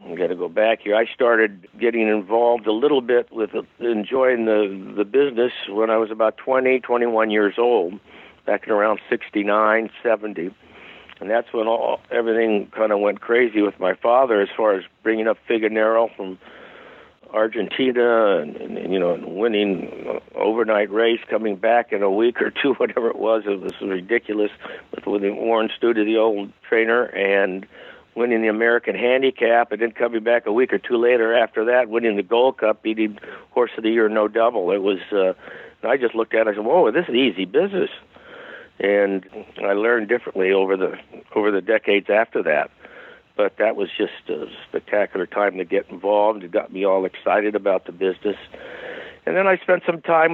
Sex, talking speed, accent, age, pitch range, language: male, 185 wpm, American, 60-79, 105-125 Hz, English